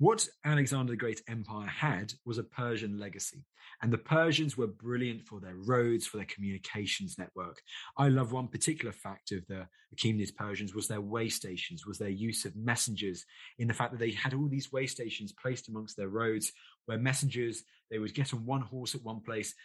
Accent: British